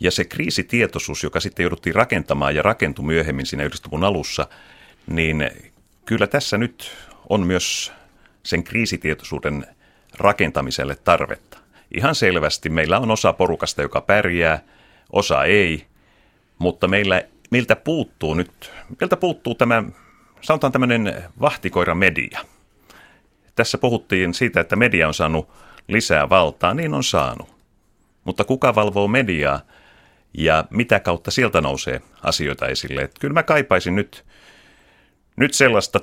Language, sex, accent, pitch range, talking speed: Finnish, male, native, 80-115 Hz, 125 wpm